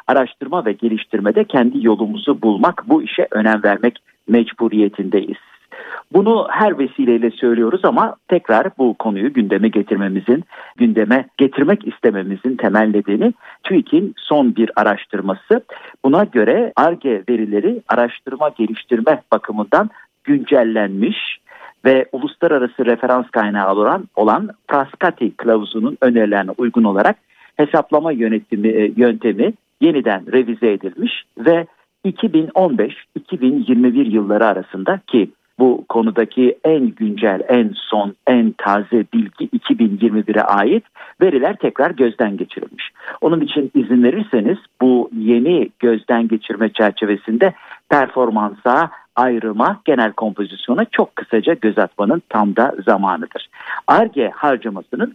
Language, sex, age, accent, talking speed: Turkish, male, 50-69, native, 105 wpm